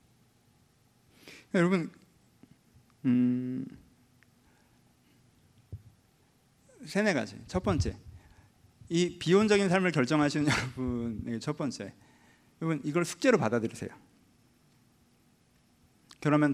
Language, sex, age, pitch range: Korean, male, 40-59, 120-190 Hz